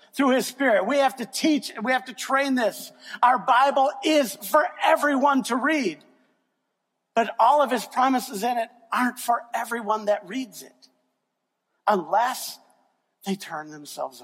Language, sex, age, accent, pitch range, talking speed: English, male, 50-69, American, 230-280 Hz, 155 wpm